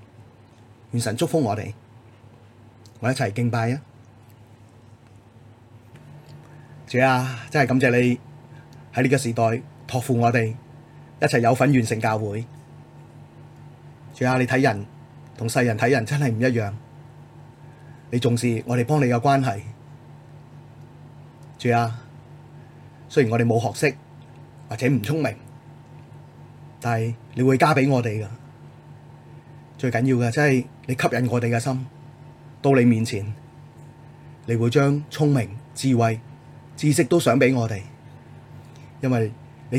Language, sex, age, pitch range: Chinese, male, 30-49, 120-150 Hz